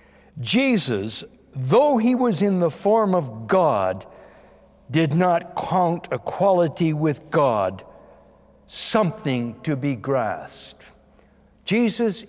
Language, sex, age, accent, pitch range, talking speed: English, male, 60-79, American, 145-210 Hz, 100 wpm